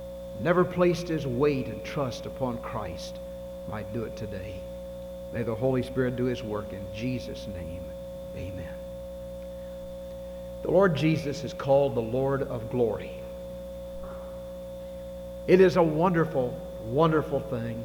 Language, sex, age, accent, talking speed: English, male, 60-79, American, 130 wpm